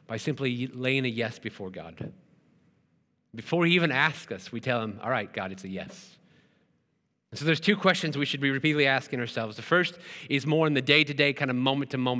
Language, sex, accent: English, male, American